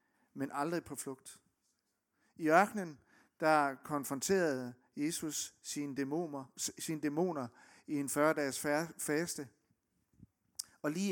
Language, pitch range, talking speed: Danish, 135-165 Hz, 115 wpm